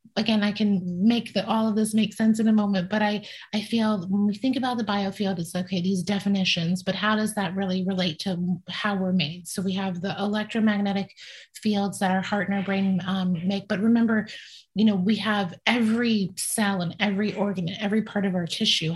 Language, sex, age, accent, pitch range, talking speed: English, female, 30-49, American, 185-215 Hz, 220 wpm